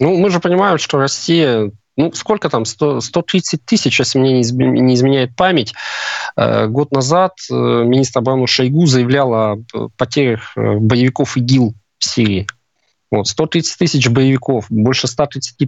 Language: Russian